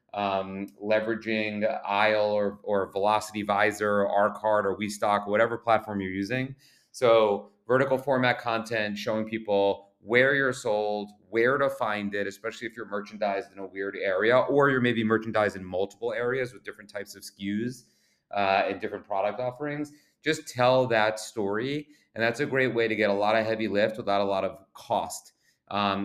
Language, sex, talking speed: English, male, 180 wpm